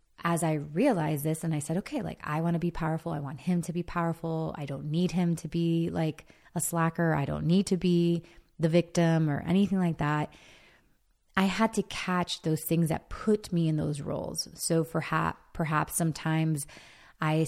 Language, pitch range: English, 155-185 Hz